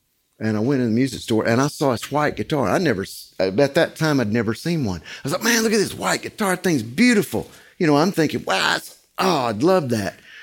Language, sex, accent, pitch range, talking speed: English, male, American, 115-145 Hz, 240 wpm